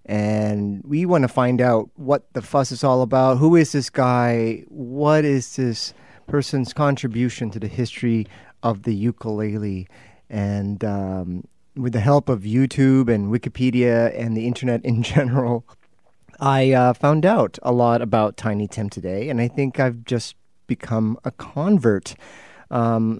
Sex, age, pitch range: male, 30-49, 110-130 Hz